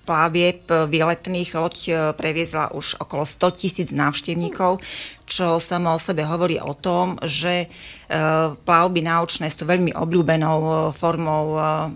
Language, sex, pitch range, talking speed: Slovak, female, 155-175 Hz, 115 wpm